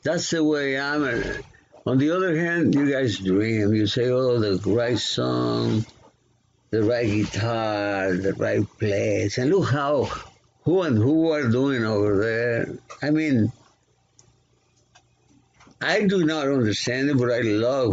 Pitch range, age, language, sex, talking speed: 105-150 Hz, 60-79, English, male, 145 wpm